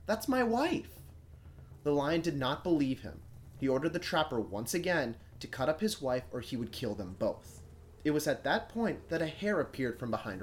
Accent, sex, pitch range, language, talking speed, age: American, male, 110-180 Hz, English, 215 wpm, 30-49